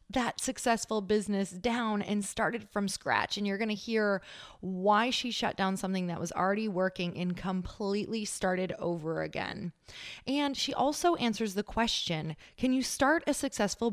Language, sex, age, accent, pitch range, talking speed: English, female, 20-39, American, 180-230 Hz, 165 wpm